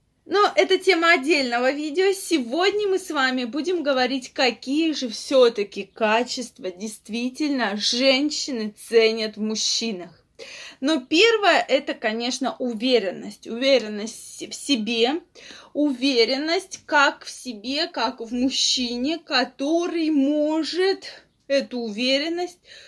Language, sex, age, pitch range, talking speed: Russian, female, 20-39, 240-320 Hz, 100 wpm